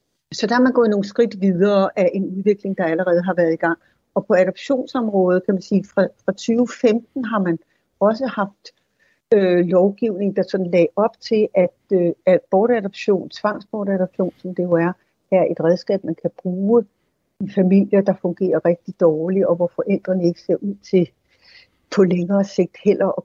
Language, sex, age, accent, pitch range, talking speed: Danish, female, 60-79, native, 175-210 Hz, 175 wpm